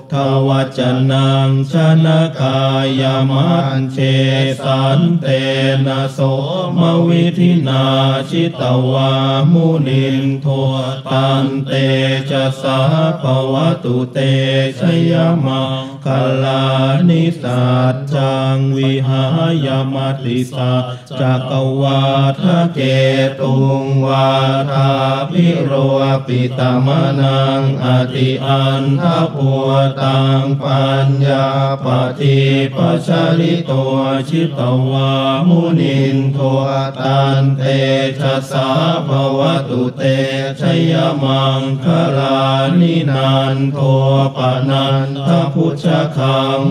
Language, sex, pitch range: Thai, male, 135-140 Hz